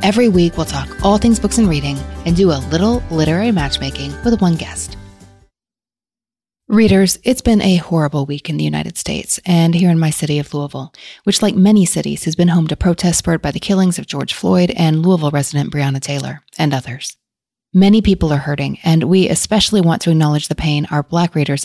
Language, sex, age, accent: English, female, 30-49, American